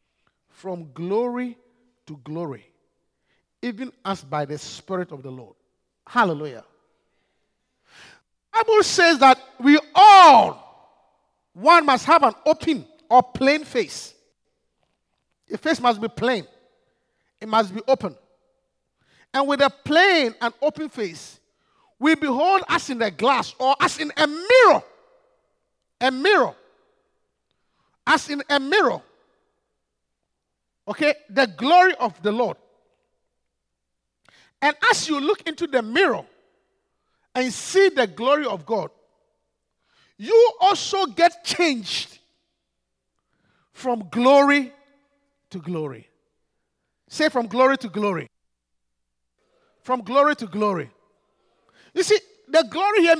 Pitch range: 220-340 Hz